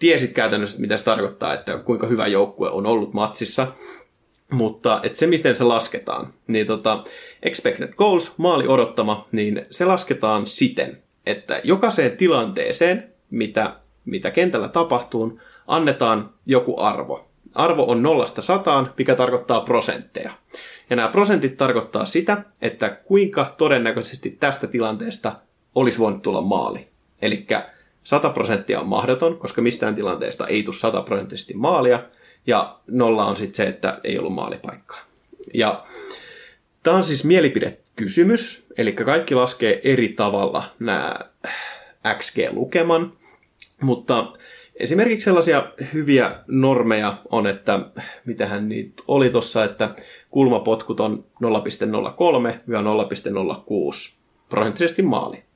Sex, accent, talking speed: male, native, 115 wpm